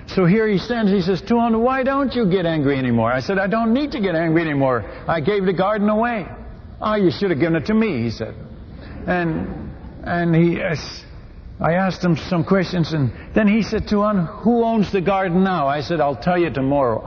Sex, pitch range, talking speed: male, 140-195 Hz, 215 wpm